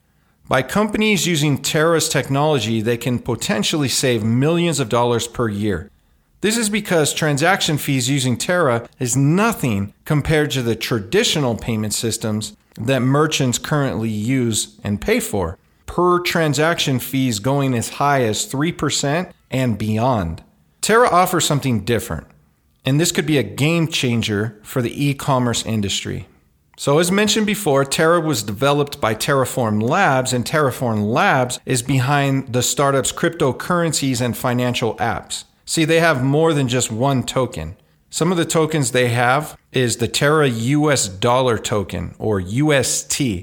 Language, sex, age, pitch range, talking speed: English, male, 40-59, 115-155 Hz, 145 wpm